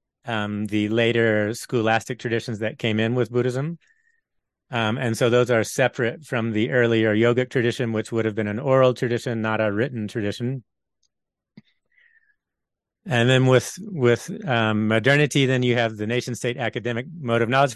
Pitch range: 115-130 Hz